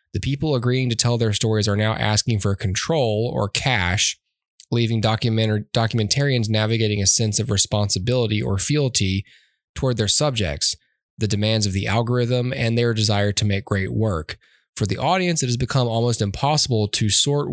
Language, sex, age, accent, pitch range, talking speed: English, male, 20-39, American, 100-120 Hz, 165 wpm